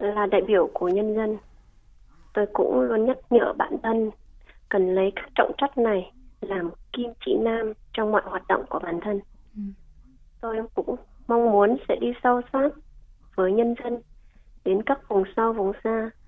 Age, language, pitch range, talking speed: 20-39, Vietnamese, 195-250 Hz, 175 wpm